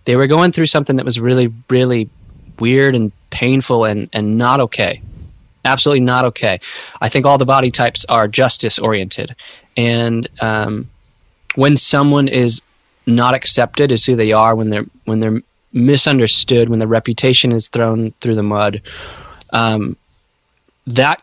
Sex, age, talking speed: male, 20-39, 155 wpm